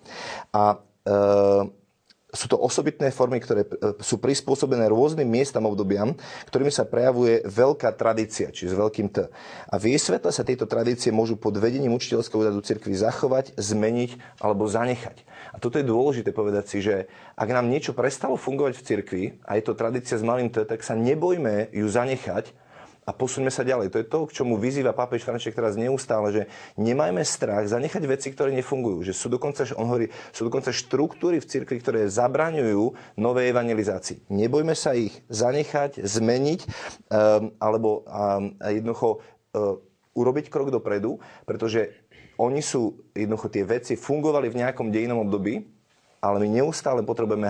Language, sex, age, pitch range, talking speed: Slovak, male, 30-49, 105-125 Hz, 155 wpm